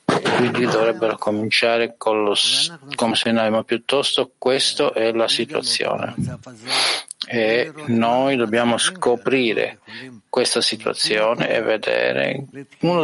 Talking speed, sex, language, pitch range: 95 wpm, male, Italian, 110-130 Hz